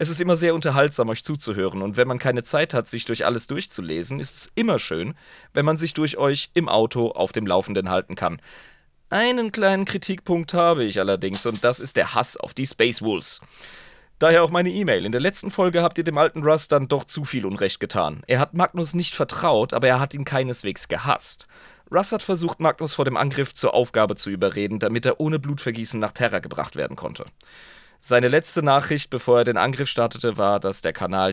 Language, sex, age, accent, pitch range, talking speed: German, male, 30-49, German, 105-155 Hz, 210 wpm